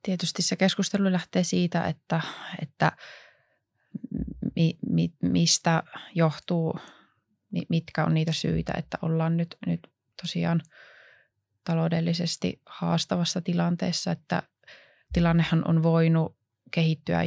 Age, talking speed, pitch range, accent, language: 20-39, 95 wpm, 150-175 Hz, native, Finnish